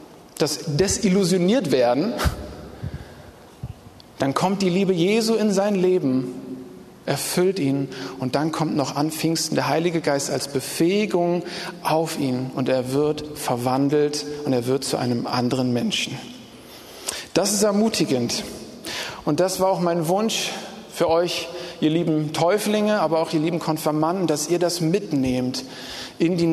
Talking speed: 140 wpm